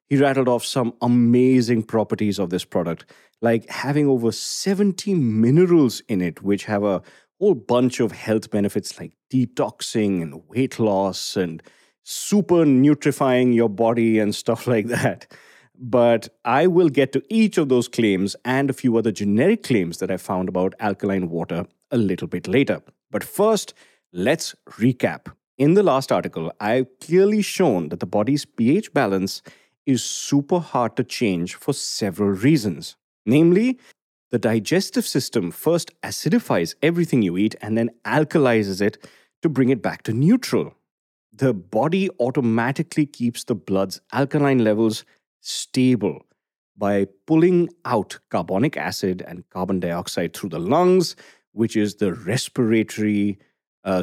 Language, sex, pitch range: English, male, 100-145 Hz